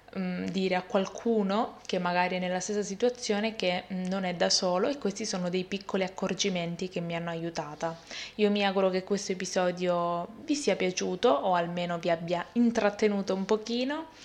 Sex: female